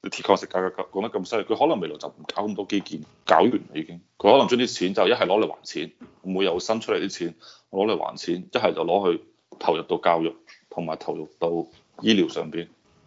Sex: male